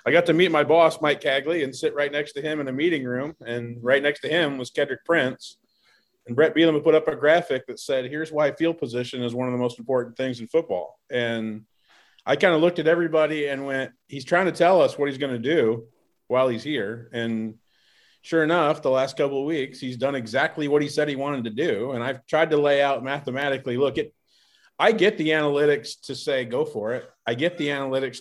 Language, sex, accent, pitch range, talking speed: English, male, American, 120-150 Hz, 235 wpm